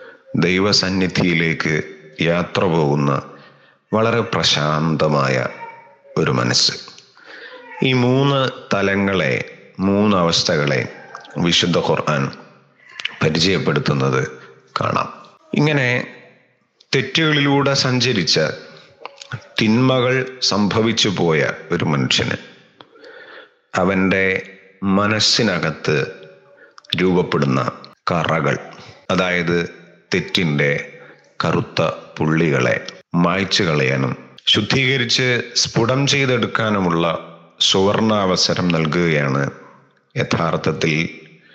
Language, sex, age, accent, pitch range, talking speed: Malayalam, male, 30-49, native, 80-125 Hz, 55 wpm